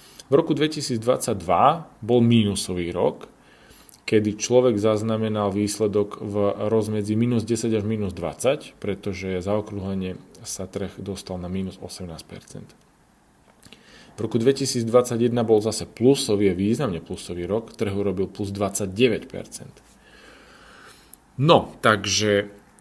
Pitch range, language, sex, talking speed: 95-115 Hz, Slovak, male, 105 wpm